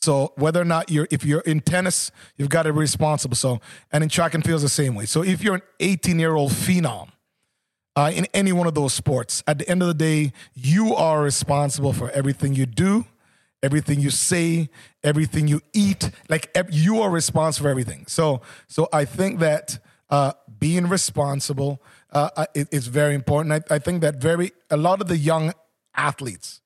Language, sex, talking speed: English, male, 185 wpm